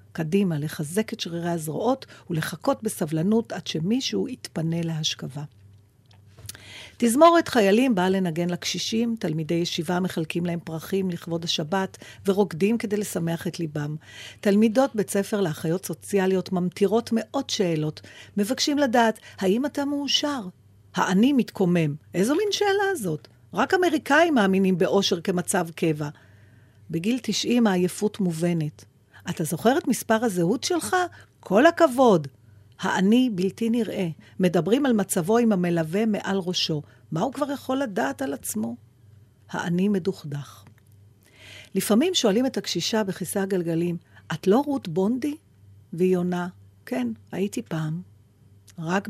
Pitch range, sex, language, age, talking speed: 160-220 Hz, female, Hebrew, 40-59, 120 wpm